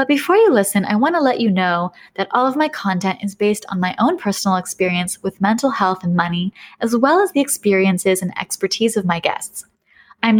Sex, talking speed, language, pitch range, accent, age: female, 220 wpm, English, 185-255 Hz, American, 20-39